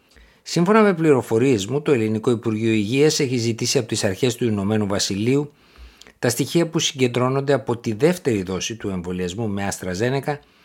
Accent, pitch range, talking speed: native, 100-145 Hz, 160 wpm